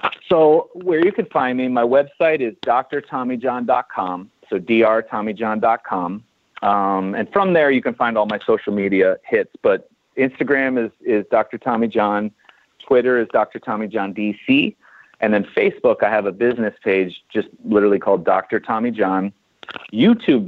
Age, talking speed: 40-59, 130 wpm